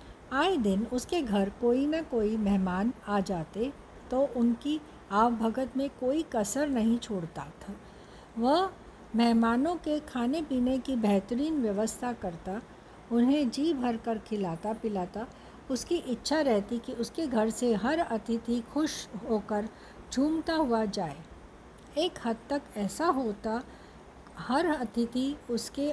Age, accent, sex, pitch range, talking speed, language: 60-79, native, female, 215-285 Hz, 125 wpm, Hindi